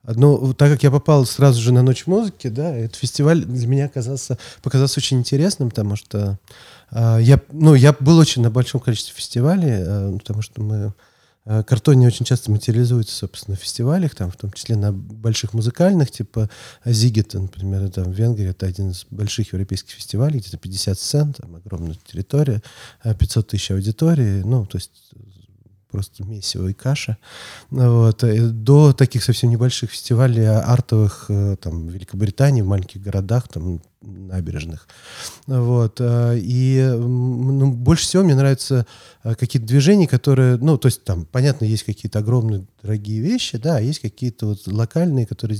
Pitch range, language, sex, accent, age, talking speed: 105-130 Hz, Russian, male, native, 30-49, 160 wpm